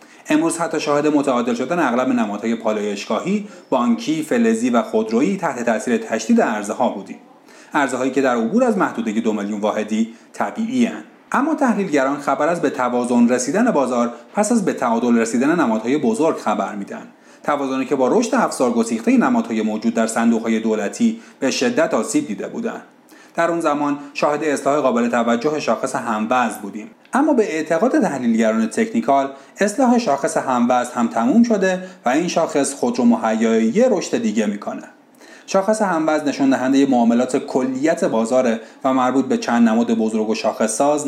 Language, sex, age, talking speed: Persian, male, 30-49, 155 wpm